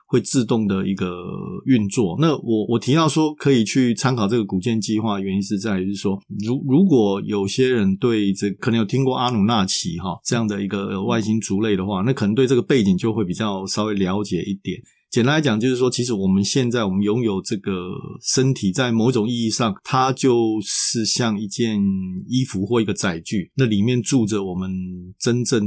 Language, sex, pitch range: Chinese, male, 100-130 Hz